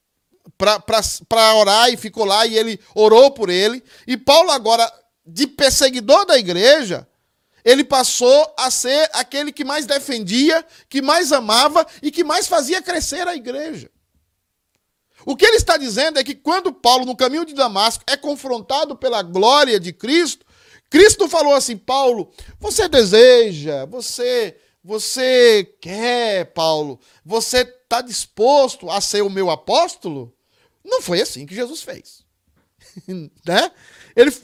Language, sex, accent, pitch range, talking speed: Portuguese, male, Brazilian, 235-325 Hz, 140 wpm